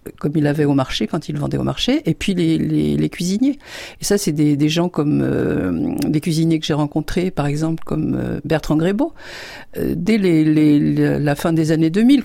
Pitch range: 150-185 Hz